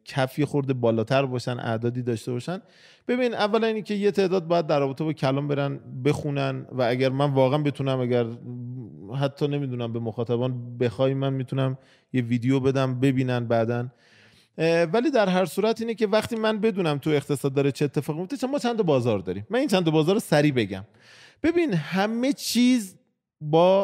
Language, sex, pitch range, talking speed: Persian, male, 125-195 Hz, 170 wpm